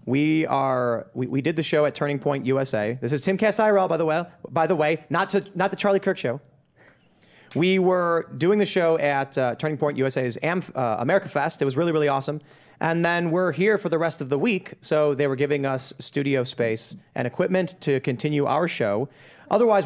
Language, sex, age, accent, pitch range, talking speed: English, male, 30-49, American, 130-165 Hz, 220 wpm